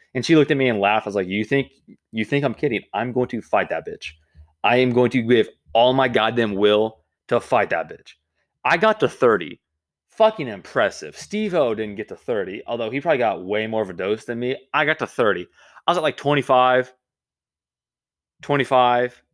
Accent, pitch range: American, 90-125 Hz